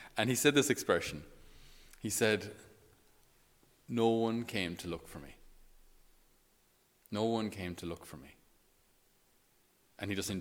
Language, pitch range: English, 90-120 Hz